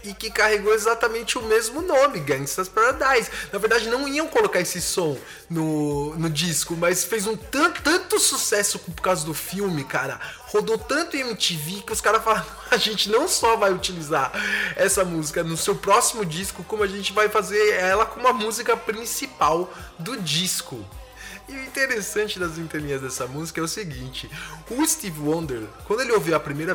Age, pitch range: 20-39, 160-220 Hz